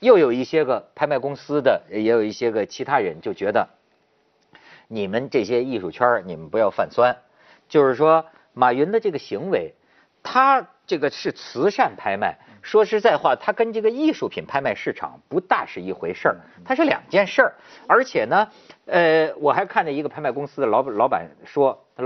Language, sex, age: Chinese, male, 50-69